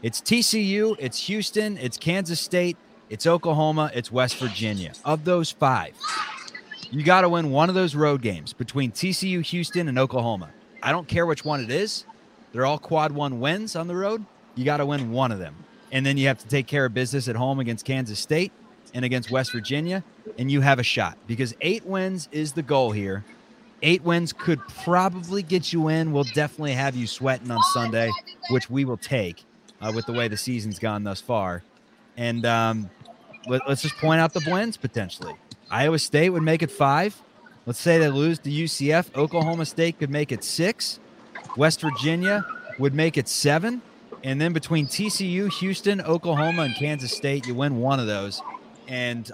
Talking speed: 190 wpm